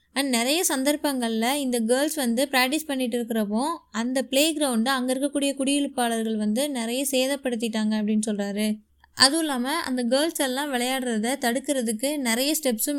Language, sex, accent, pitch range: Tamil, female, native, 230-275 Hz